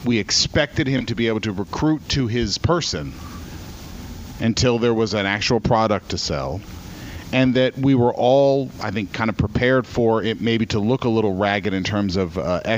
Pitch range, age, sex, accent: 100-125 Hz, 40-59, male, American